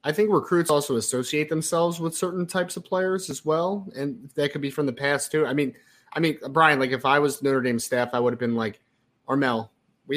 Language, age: English, 30-49